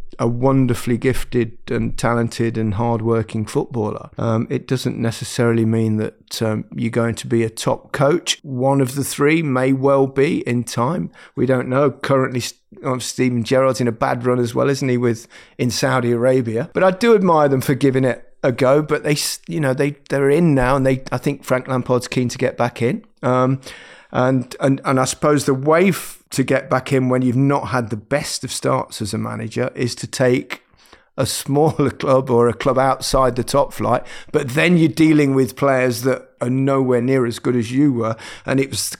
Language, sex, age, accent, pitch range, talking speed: English, male, 30-49, British, 115-135 Hz, 205 wpm